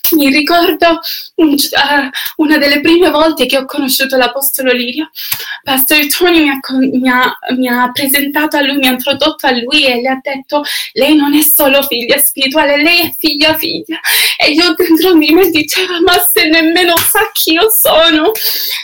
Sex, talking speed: female, 160 wpm